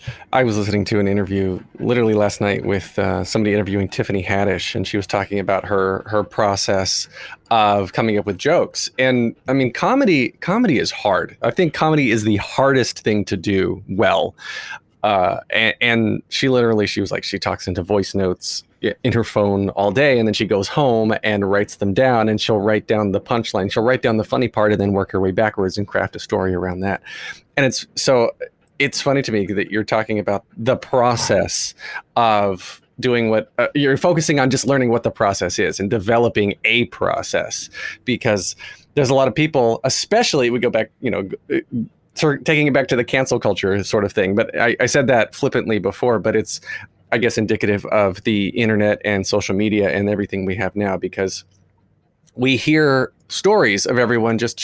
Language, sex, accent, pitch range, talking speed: English, male, American, 100-120 Hz, 195 wpm